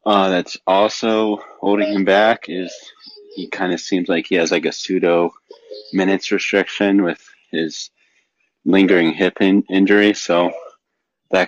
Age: 30-49